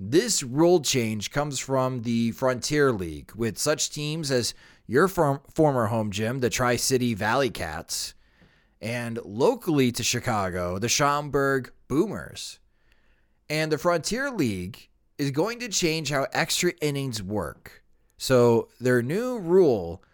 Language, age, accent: English, 30-49, American